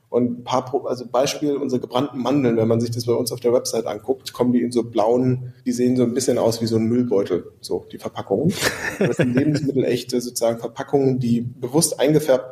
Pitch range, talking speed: 115-135 Hz, 215 wpm